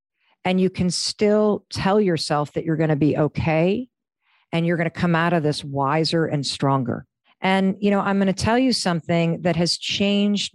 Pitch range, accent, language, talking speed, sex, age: 160-215 Hz, American, English, 200 wpm, female, 50-69